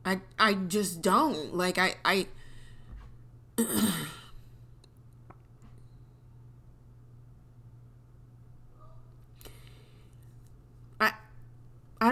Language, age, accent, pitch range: English, 30-49, American, 120-180 Hz